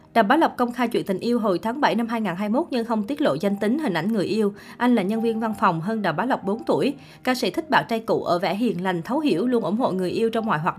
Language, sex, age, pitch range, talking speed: Vietnamese, female, 20-39, 190-240 Hz, 305 wpm